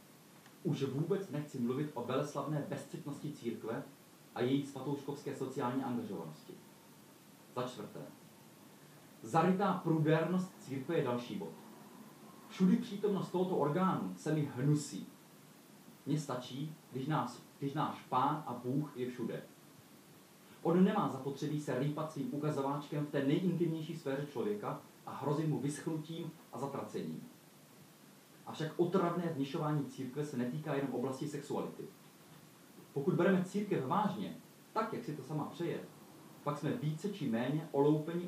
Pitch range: 135-165 Hz